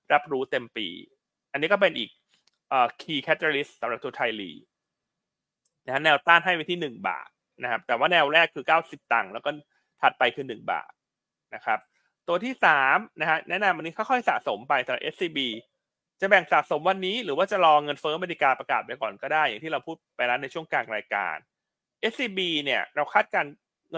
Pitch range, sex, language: 140-190 Hz, male, Thai